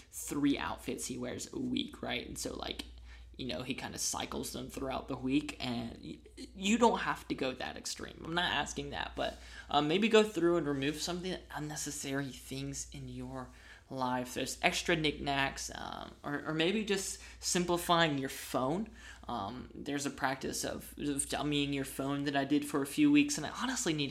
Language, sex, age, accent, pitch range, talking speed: English, male, 20-39, American, 130-160 Hz, 190 wpm